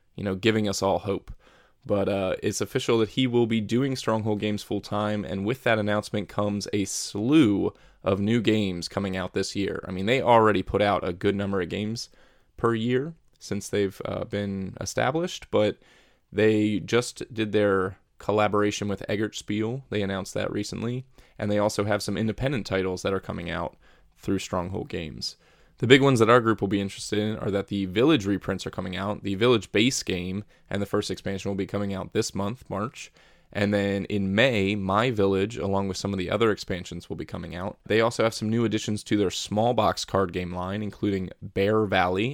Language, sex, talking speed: English, male, 200 wpm